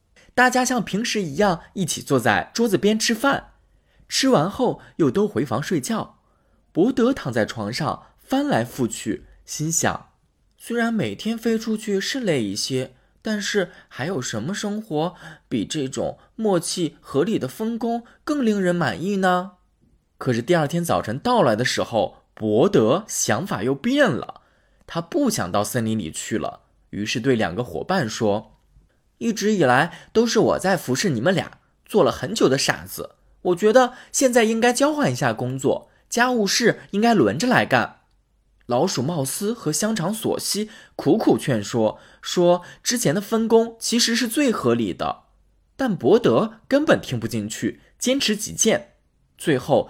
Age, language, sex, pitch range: 20-39, Chinese, male, 140-235 Hz